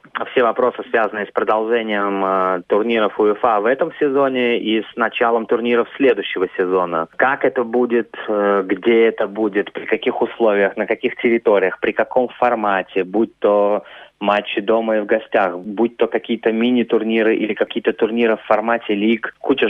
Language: Russian